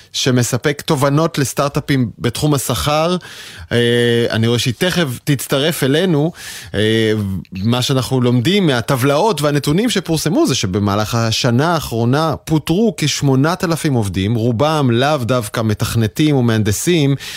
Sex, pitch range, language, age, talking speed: male, 115-150 Hz, Hebrew, 30-49, 100 wpm